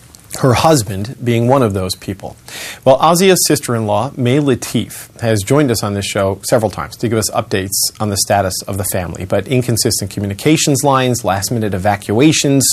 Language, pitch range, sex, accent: English, 105-125 Hz, male, American